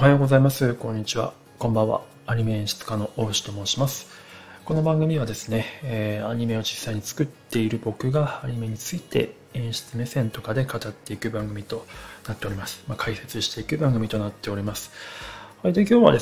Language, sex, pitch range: Japanese, male, 110-140 Hz